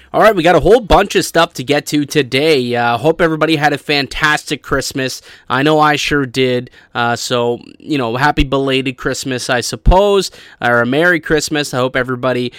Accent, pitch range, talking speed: American, 125-150 Hz, 195 wpm